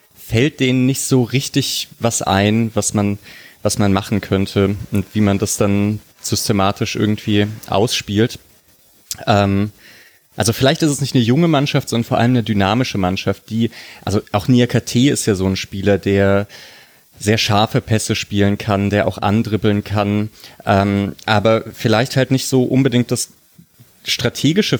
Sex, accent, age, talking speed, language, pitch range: male, German, 30-49, 155 wpm, German, 100-120 Hz